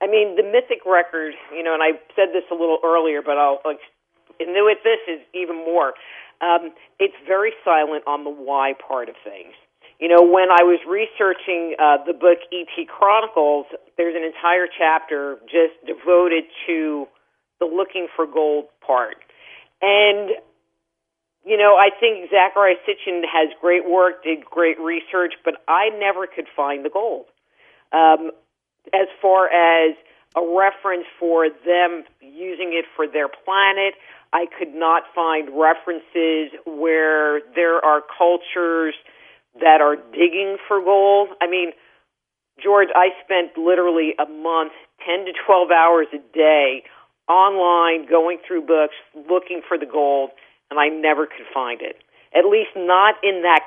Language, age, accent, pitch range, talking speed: English, 50-69, American, 155-185 Hz, 150 wpm